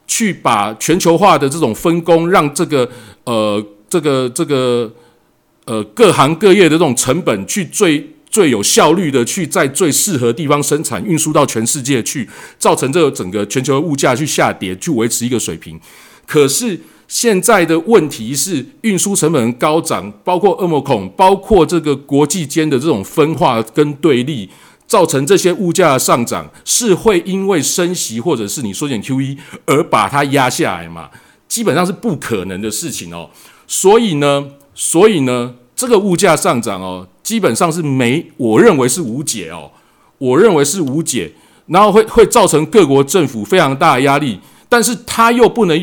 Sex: male